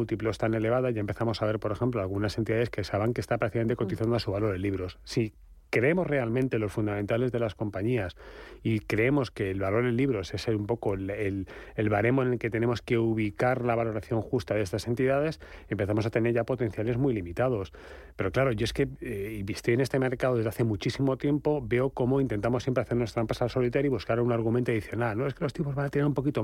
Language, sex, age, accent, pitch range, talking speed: Spanish, male, 30-49, Spanish, 110-135 Hz, 230 wpm